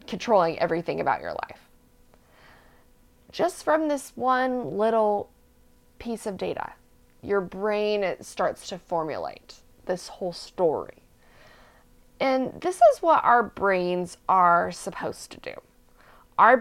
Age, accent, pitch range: 20-39, American, 180-255 Hz